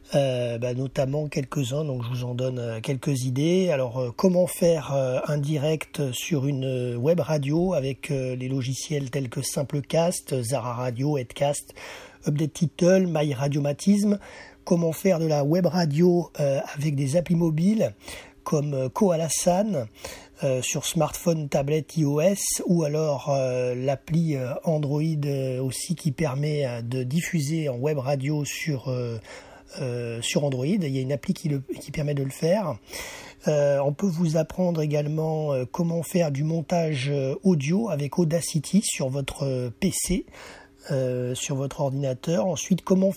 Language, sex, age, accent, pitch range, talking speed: French, male, 30-49, French, 135-170 Hz, 155 wpm